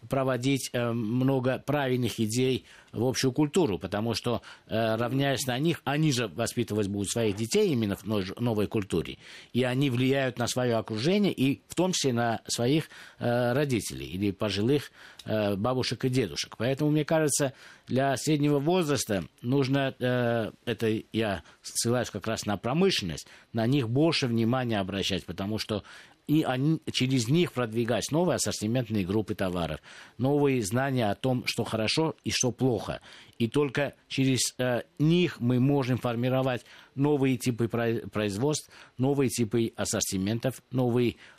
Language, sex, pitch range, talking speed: Russian, male, 110-140 Hz, 140 wpm